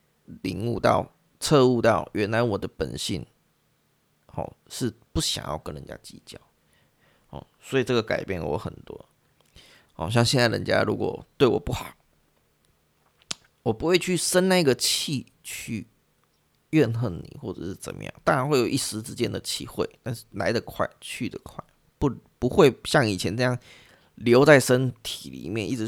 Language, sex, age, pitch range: Chinese, male, 20-39, 100-125 Hz